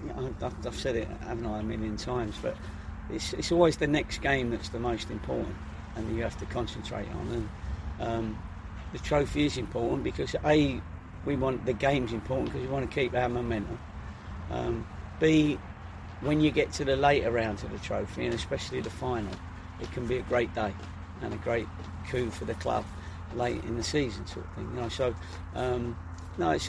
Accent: British